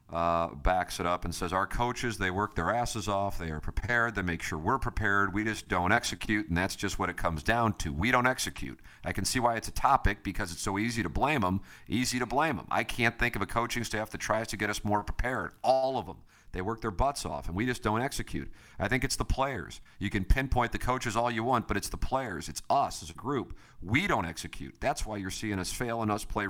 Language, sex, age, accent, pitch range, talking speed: English, male, 50-69, American, 85-115 Hz, 260 wpm